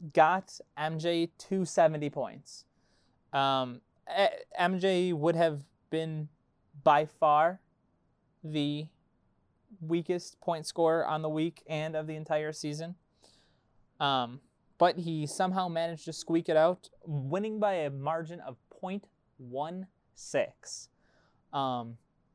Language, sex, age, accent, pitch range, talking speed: English, male, 20-39, American, 150-185 Hz, 110 wpm